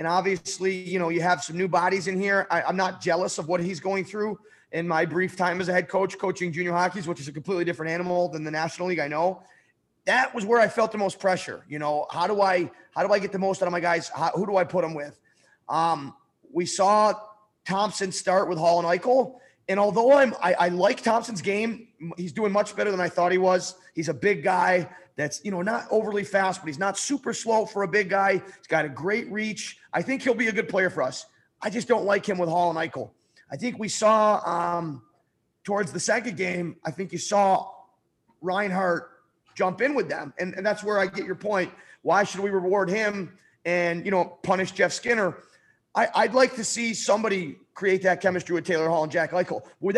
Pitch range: 175-210 Hz